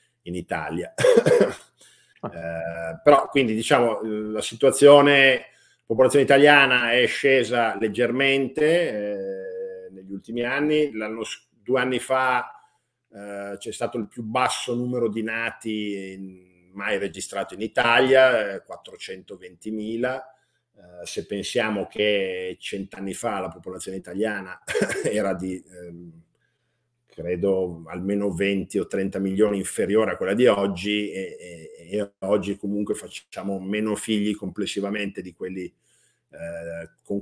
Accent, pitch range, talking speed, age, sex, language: native, 100-125 Hz, 120 wpm, 50-69, male, Italian